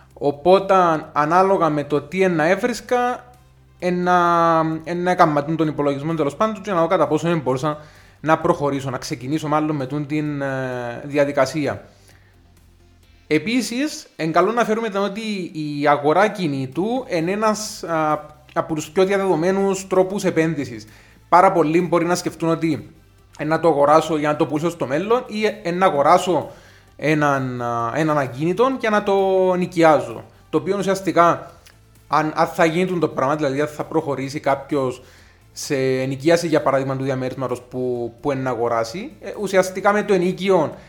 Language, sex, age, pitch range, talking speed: Greek, male, 20-39, 135-185 Hz, 150 wpm